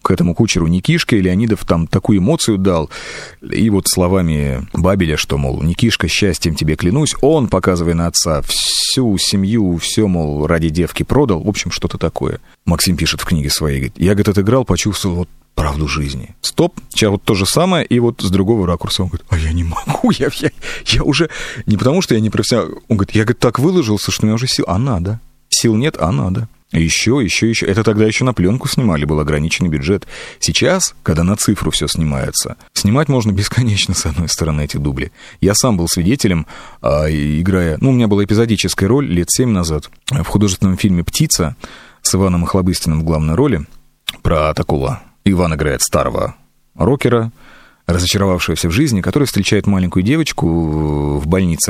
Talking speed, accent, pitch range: 180 wpm, native, 80-110 Hz